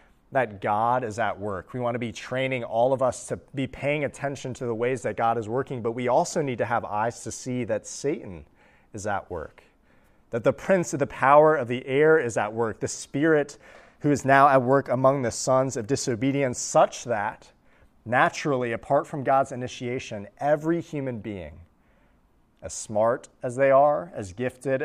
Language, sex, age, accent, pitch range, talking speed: English, male, 30-49, American, 105-135 Hz, 190 wpm